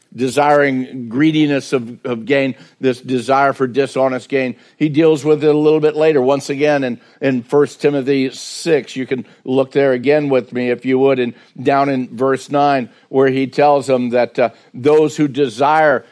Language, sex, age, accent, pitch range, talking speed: English, male, 60-79, American, 125-150 Hz, 180 wpm